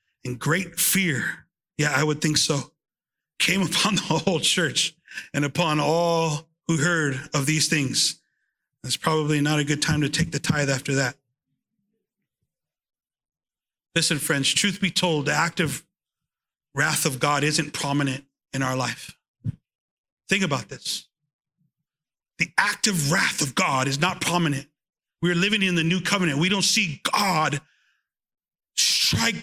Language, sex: English, male